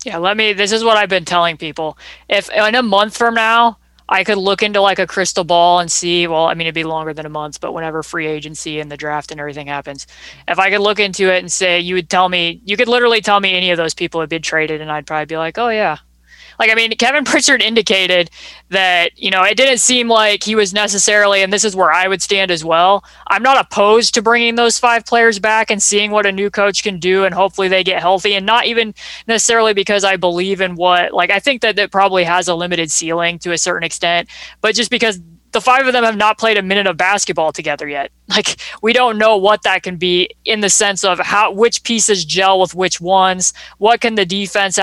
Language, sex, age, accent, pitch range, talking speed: English, female, 20-39, American, 170-215 Hz, 250 wpm